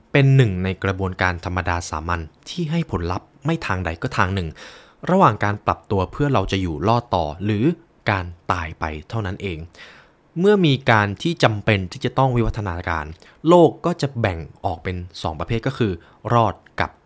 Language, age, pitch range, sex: Thai, 20-39, 95-130 Hz, male